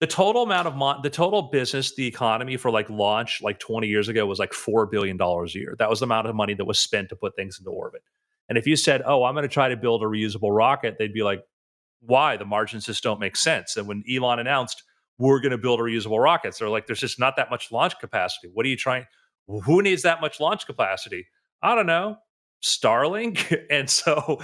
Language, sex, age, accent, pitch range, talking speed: English, male, 30-49, American, 110-150 Hz, 245 wpm